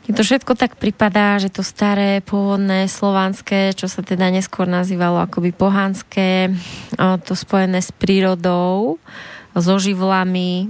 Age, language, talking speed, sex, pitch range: 20-39, Slovak, 125 wpm, female, 180-200 Hz